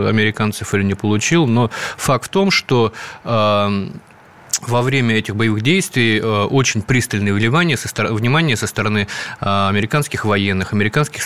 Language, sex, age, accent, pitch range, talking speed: Russian, male, 20-39, native, 105-120 Hz, 115 wpm